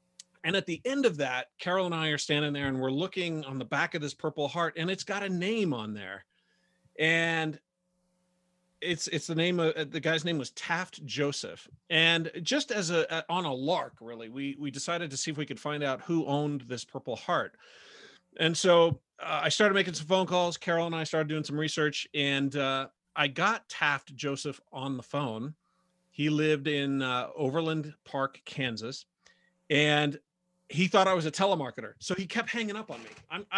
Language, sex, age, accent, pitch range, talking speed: English, male, 40-59, American, 140-180 Hz, 200 wpm